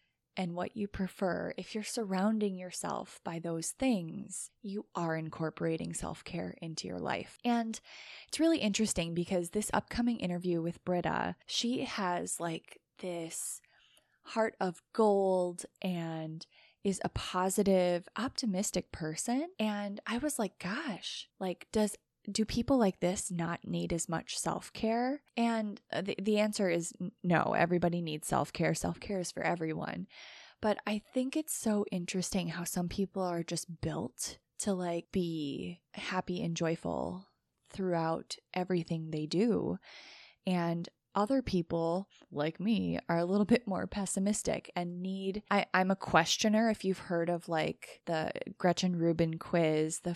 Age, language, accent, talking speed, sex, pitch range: 20-39, English, American, 140 wpm, female, 170-210 Hz